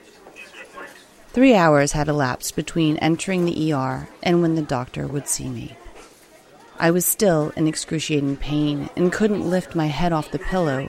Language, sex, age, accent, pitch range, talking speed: English, female, 30-49, American, 145-180 Hz, 160 wpm